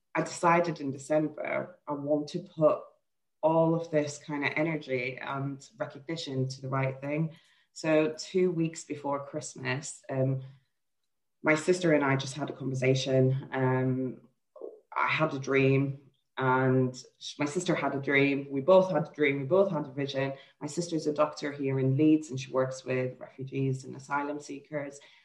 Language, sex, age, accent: English, female, 20-39, British